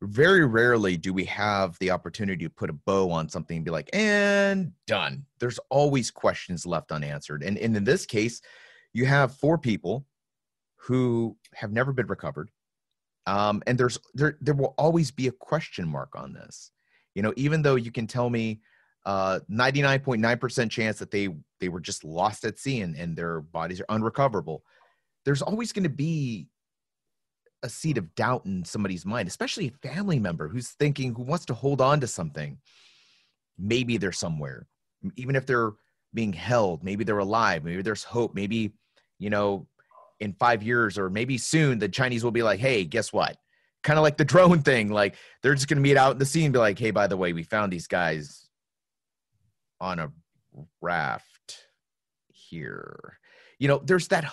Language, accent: English, American